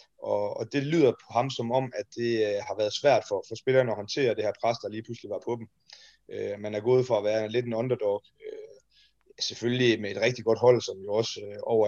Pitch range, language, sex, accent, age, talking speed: 110-140 Hz, Danish, male, native, 30-49, 255 wpm